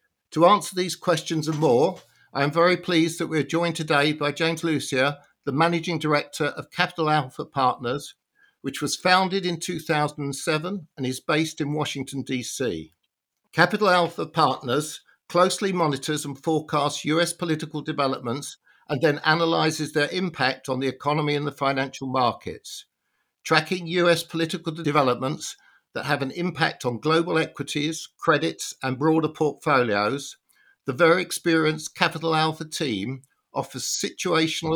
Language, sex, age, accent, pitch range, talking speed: English, male, 60-79, British, 140-165 Hz, 140 wpm